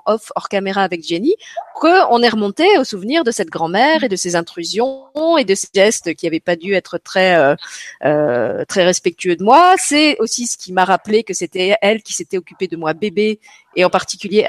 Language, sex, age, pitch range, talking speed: French, female, 40-59, 175-240 Hz, 210 wpm